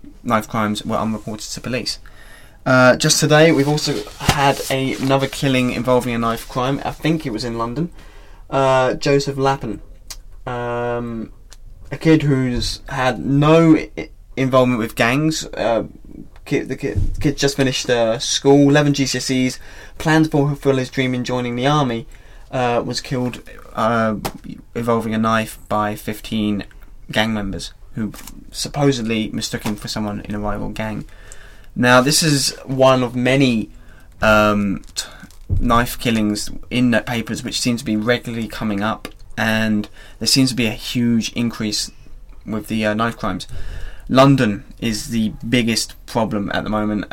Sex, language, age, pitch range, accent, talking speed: male, English, 20-39, 105-130 Hz, British, 155 wpm